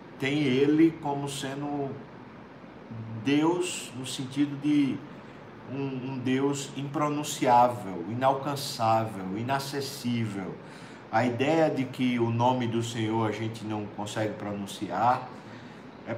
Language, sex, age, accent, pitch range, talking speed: Portuguese, male, 50-69, Brazilian, 115-145 Hz, 105 wpm